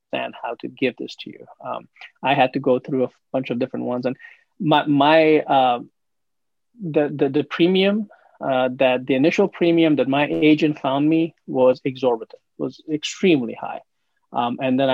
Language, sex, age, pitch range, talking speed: English, male, 20-39, 130-155 Hz, 175 wpm